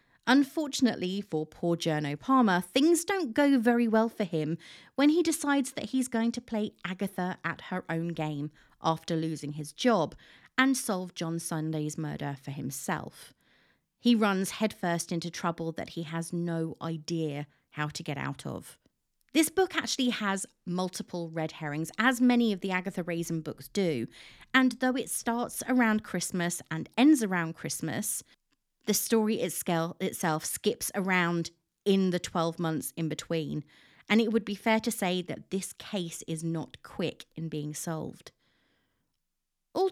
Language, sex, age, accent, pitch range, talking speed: English, female, 30-49, British, 165-230 Hz, 155 wpm